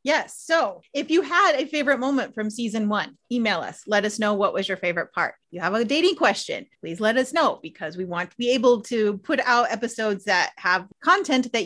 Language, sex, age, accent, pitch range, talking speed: English, female, 30-49, American, 195-260 Hz, 225 wpm